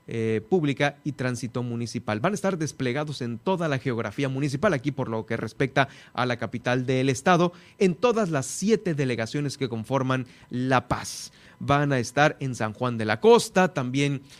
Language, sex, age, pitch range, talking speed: Spanish, male, 30-49, 120-155 Hz, 180 wpm